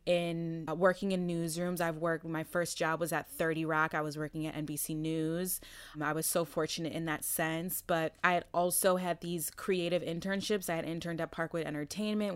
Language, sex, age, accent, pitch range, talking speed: English, female, 20-39, American, 165-190 Hz, 205 wpm